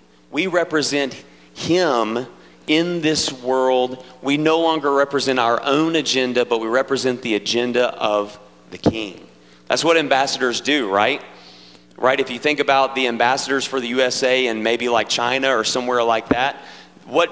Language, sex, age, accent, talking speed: English, male, 40-59, American, 155 wpm